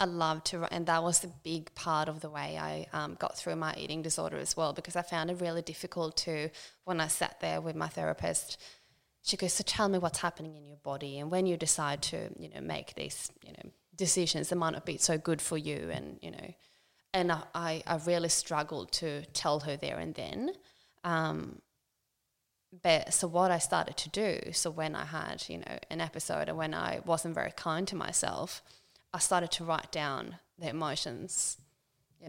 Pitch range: 150-175 Hz